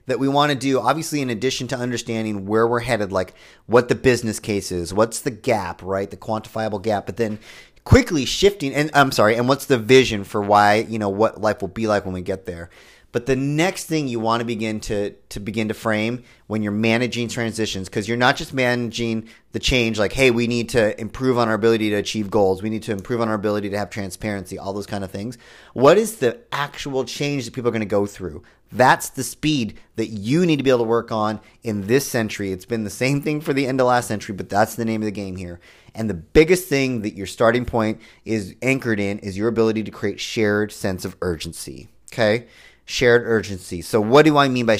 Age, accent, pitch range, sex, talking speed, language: 30-49, American, 105-125 Hz, male, 235 wpm, English